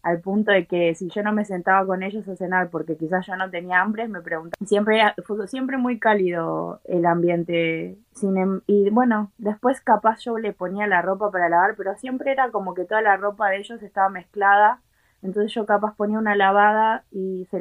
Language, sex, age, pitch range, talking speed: Spanish, female, 20-39, 175-210 Hz, 210 wpm